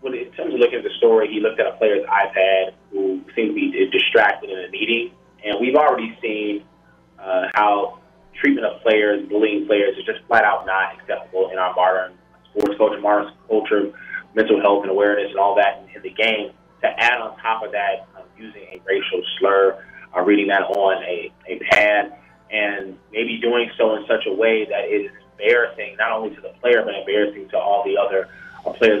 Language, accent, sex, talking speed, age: English, American, male, 205 wpm, 20-39